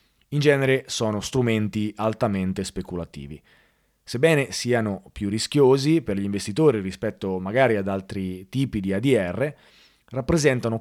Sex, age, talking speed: male, 20-39, 115 wpm